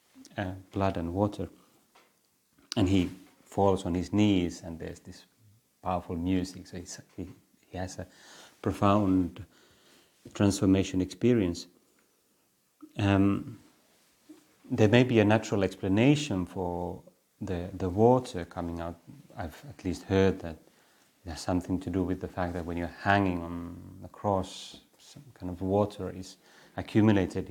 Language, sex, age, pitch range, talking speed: Finnish, male, 30-49, 90-105 Hz, 135 wpm